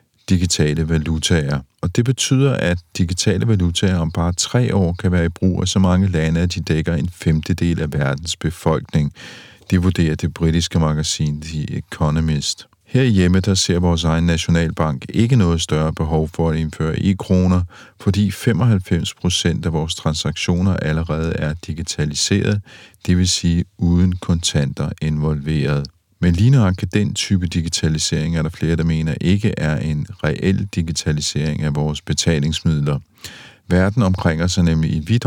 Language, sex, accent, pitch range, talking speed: Danish, male, native, 80-95 Hz, 150 wpm